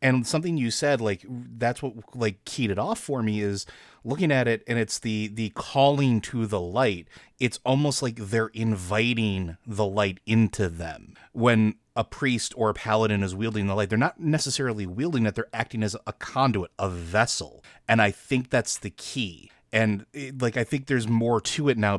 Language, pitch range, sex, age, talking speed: English, 100-120 Hz, male, 30-49, 195 wpm